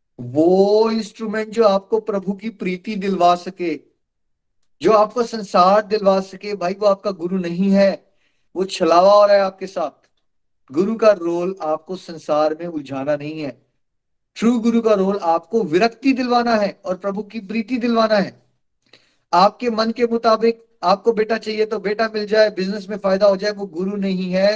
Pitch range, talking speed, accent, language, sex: 160-215 Hz, 170 wpm, native, Hindi, male